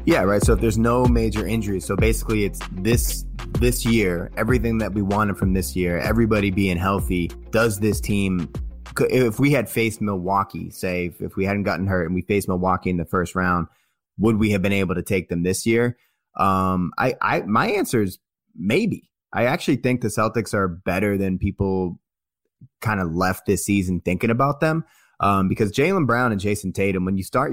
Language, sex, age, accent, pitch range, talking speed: English, male, 20-39, American, 90-110 Hz, 200 wpm